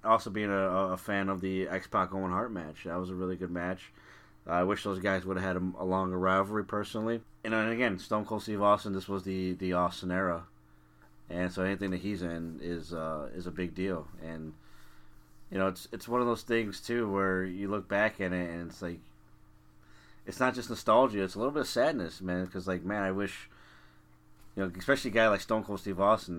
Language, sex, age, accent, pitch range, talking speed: English, male, 30-49, American, 90-105 Hz, 225 wpm